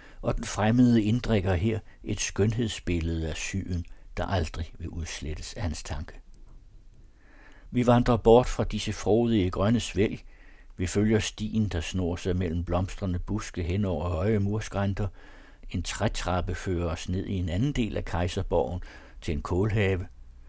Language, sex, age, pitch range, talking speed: Danish, male, 60-79, 90-105 Hz, 150 wpm